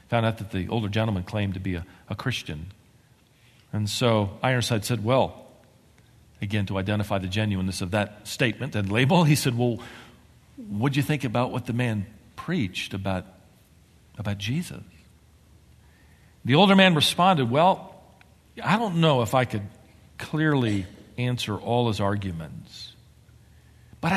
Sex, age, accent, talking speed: male, 50-69, American, 145 wpm